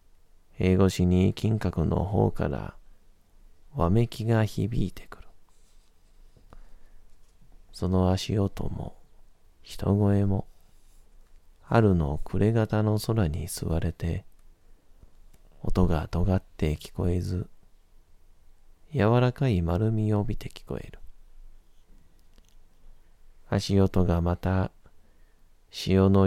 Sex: male